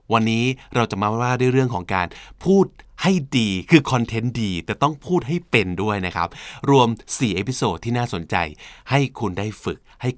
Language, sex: Thai, male